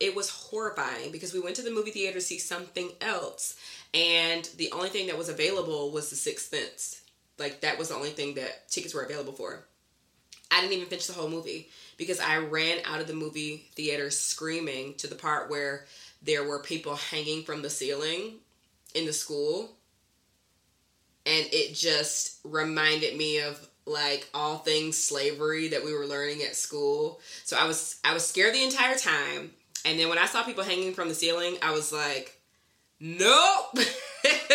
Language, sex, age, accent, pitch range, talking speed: English, female, 20-39, American, 150-235 Hz, 180 wpm